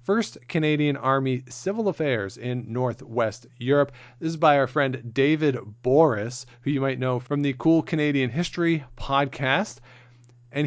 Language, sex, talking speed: English, male, 145 wpm